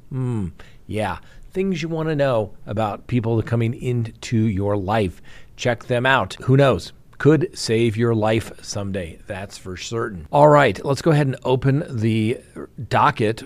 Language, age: English, 40-59